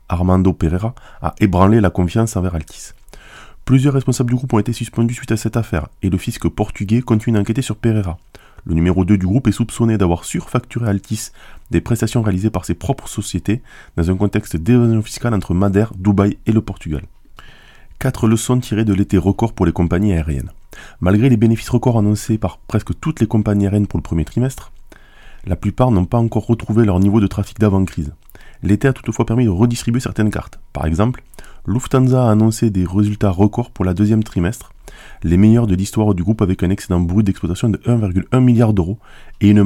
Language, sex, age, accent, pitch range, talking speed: French, male, 20-39, French, 95-115 Hz, 195 wpm